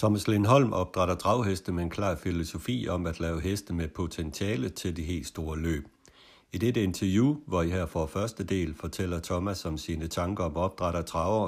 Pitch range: 85-105 Hz